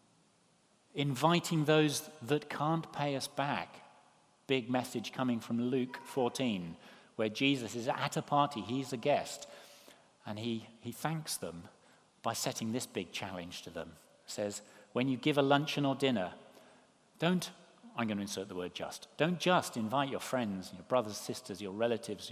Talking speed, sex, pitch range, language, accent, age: 160 wpm, male, 110-145 Hz, English, British, 40-59